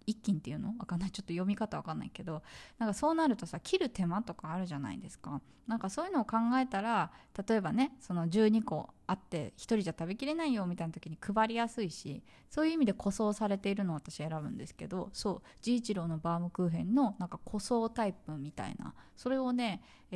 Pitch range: 180-260 Hz